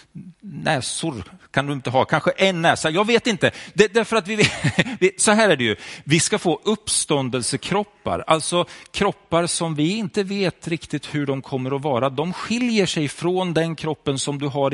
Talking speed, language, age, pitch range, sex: 185 wpm, Swedish, 40-59, 155-210 Hz, male